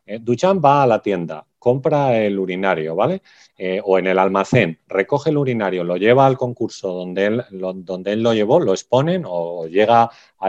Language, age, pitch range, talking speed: Spanish, 30-49, 100-140 Hz, 175 wpm